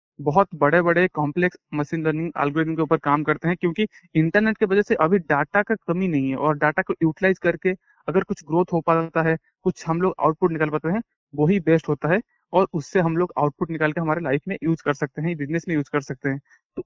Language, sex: Hindi, male